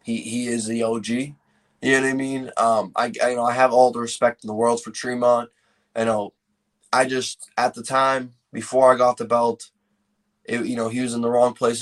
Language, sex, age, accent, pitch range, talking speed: English, male, 20-39, American, 115-140 Hz, 235 wpm